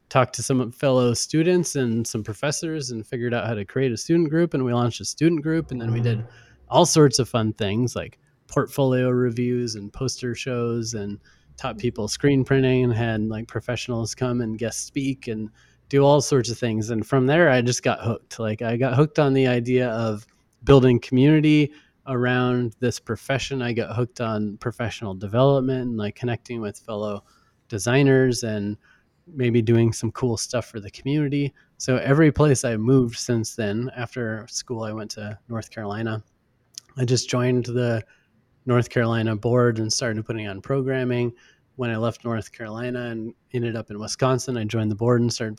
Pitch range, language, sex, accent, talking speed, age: 115-130 Hz, English, male, American, 185 wpm, 30-49